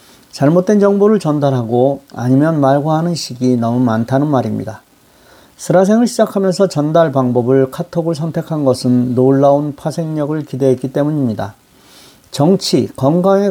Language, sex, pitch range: Korean, male, 130-165 Hz